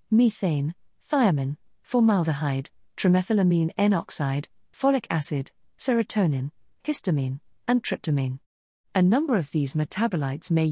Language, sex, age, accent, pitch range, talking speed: English, female, 40-59, British, 155-210 Hz, 95 wpm